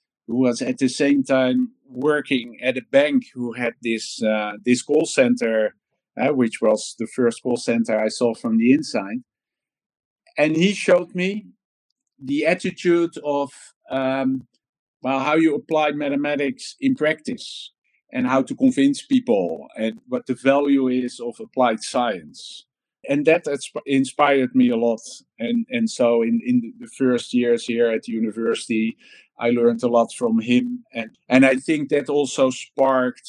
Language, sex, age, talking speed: English, male, 50-69, 160 wpm